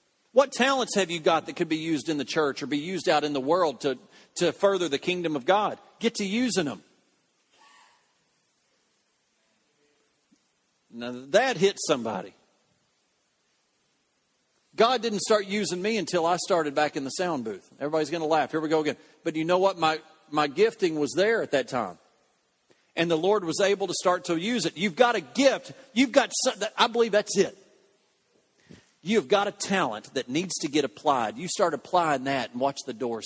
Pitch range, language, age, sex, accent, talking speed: 150-220 Hz, English, 40-59, male, American, 190 wpm